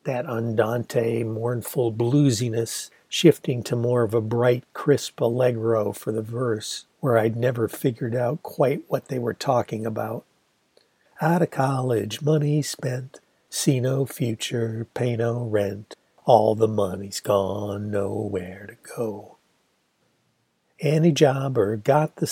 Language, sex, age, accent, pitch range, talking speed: English, male, 60-79, American, 110-130 Hz, 130 wpm